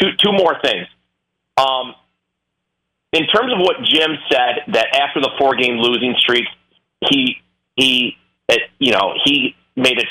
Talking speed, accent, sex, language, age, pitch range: 150 wpm, American, male, English, 40-59, 120-150 Hz